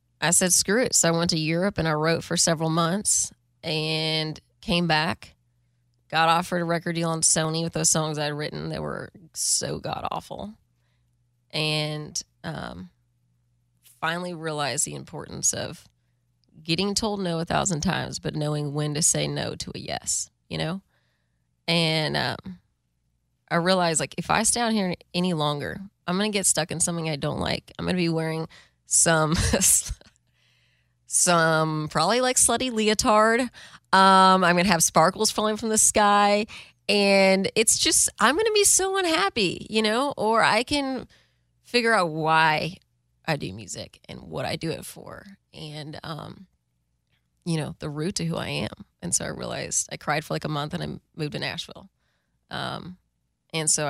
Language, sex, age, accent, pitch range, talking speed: English, female, 20-39, American, 135-190 Hz, 175 wpm